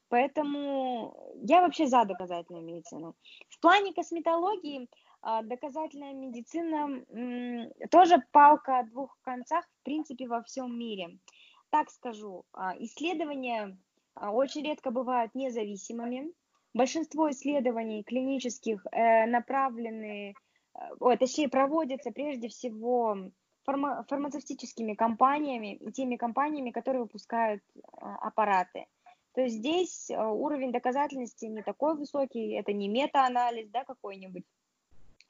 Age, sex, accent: 20-39, female, native